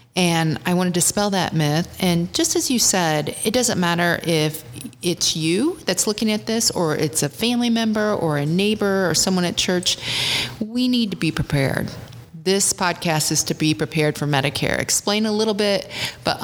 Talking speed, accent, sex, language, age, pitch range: 190 wpm, American, female, English, 40-59, 150-195 Hz